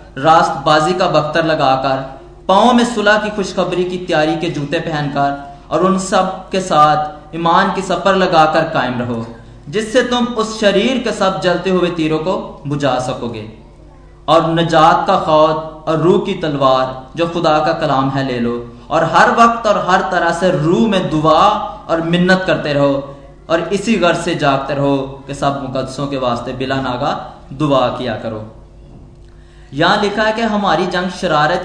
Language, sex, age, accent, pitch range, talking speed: Hindi, male, 20-39, native, 150-190 Hz, 170 wpm